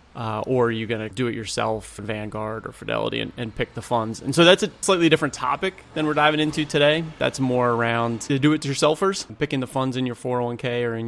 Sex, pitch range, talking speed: male, 115-140 Hz, 225 wpm